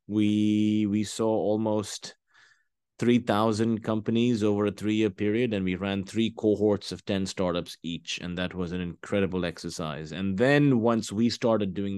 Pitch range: 85-110 Hz